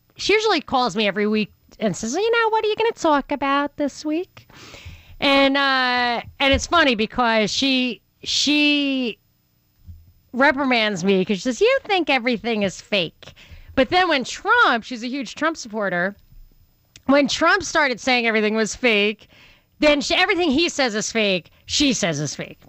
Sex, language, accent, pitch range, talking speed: female, English, American, 205-280 Hz, 165 wpm